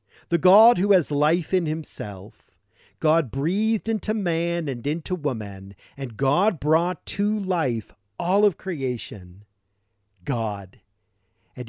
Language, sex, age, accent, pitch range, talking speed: English, male, 50-69, American, 105-170 Hz, 125 wpm